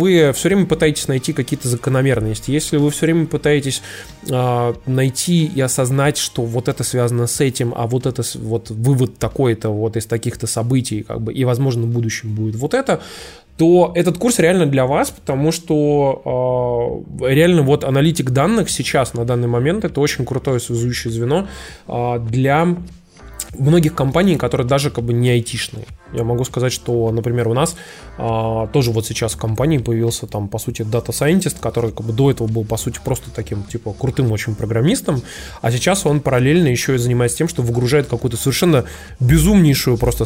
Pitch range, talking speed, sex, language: 115-150 Hz, 180 wpm, male, Russian